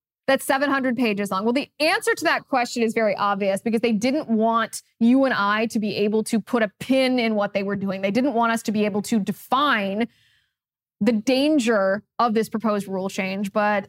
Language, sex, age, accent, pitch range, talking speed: English, female, 20-39, American, 205-270 Hz, 210 wpm